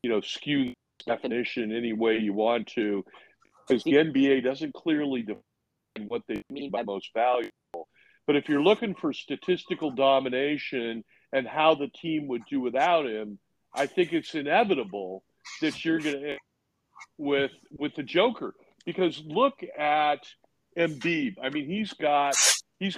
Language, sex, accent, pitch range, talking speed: English, male, American, 130-175 Hz, 145 wpm